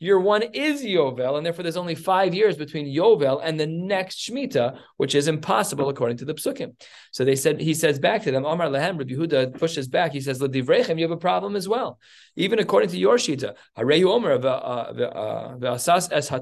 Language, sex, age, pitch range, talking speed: English, male, 20-39, 130-170 Hz, 195 wpm